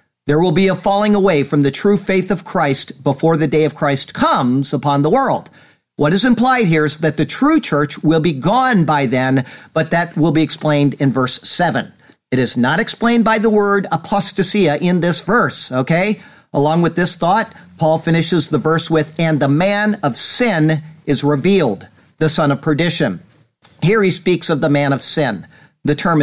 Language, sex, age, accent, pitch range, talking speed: English, male, 50-69, American, 140-180 Hz, 195 wpm